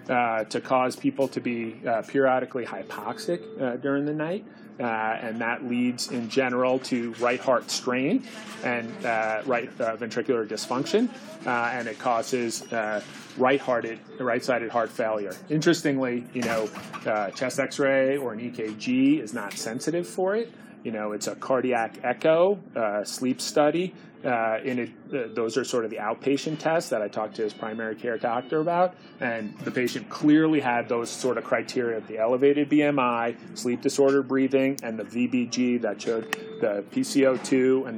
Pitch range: 115-150 Hz